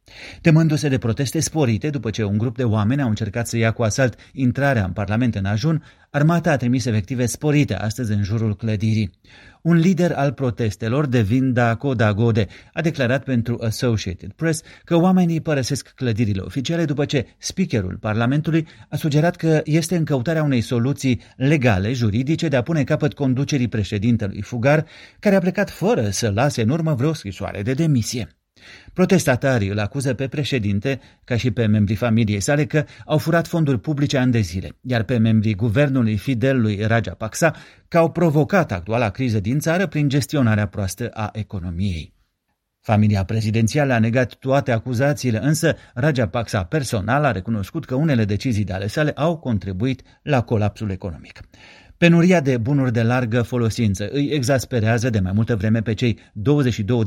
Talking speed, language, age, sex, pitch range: 165 wpm, Romanian, 30-49, male, 110-145 Hz